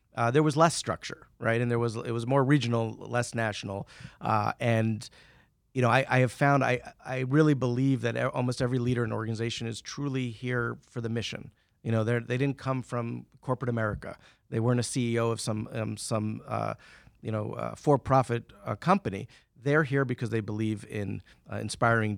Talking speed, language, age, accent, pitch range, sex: 195 wpm, English, 40-59, American, 115-140 Hz, male